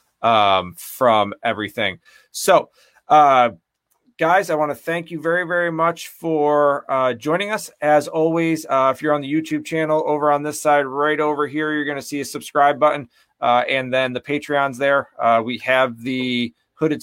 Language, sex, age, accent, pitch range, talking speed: English, male, 30-49, American, 115-150 Hz, 185 wpm